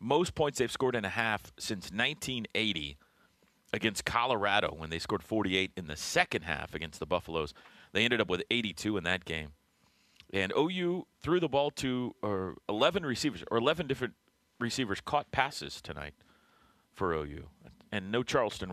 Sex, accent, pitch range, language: male, American, 95-135 Hz, English